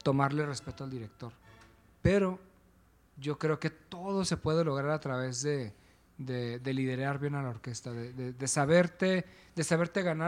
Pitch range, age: 125-175 Hz, 40-59